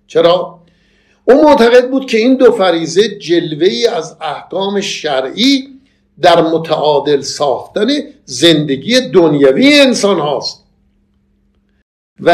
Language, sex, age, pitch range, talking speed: Persian, male, 50-69, 155-225 Hz, 90 wpm